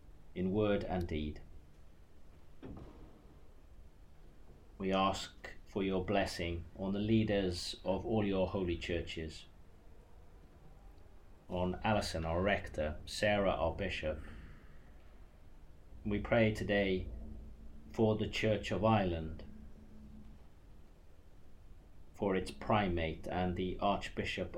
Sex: male